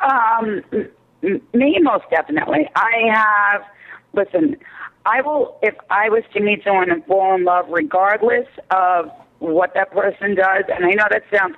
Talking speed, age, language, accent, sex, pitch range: 155 wpm, 50-69, English, American, female, 190-285 Hz